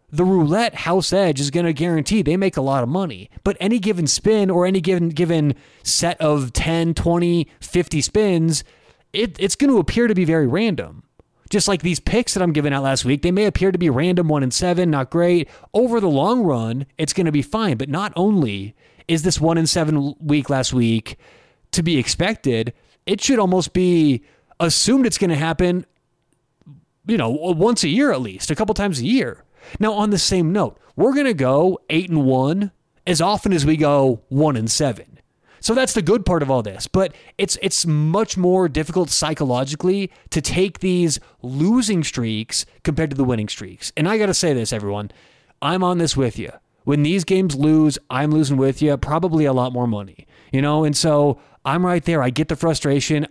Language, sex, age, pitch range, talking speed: English, male, 20-39, 140-185 Hz, 205 wpm